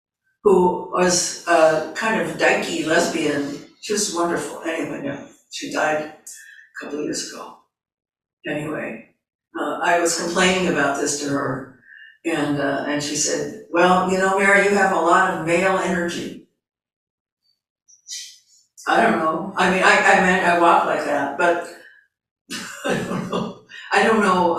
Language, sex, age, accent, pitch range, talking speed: English, female, 60-79, American, 160-185 Hz, 145 wpm